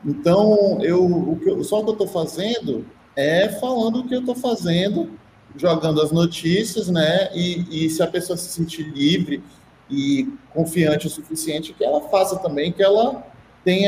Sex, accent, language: male, Brazilian, Portuguese